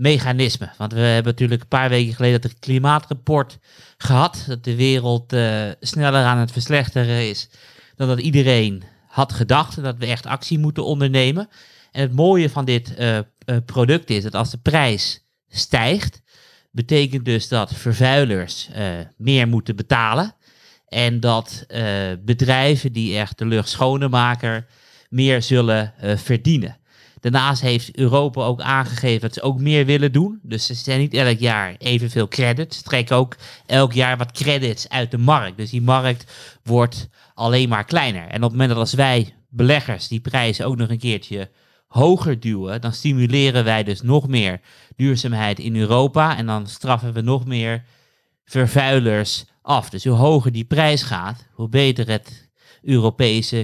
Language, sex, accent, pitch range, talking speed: Dutch, male, Dutch, 115-135 Hz, 165 wpm